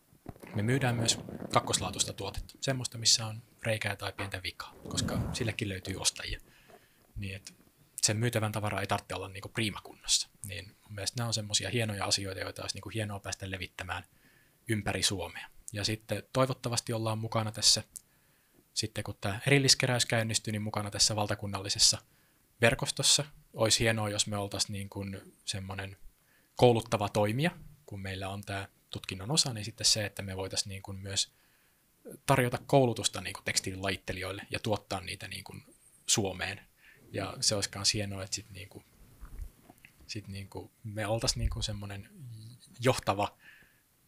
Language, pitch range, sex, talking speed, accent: Finnish, 100-115 Hz, male, 130 wpm, native